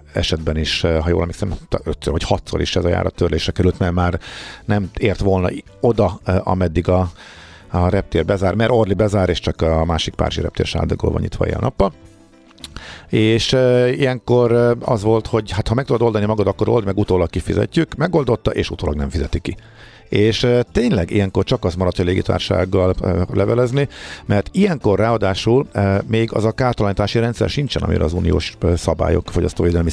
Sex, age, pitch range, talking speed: male, 50-69, 85-110 Hz, 160 wpm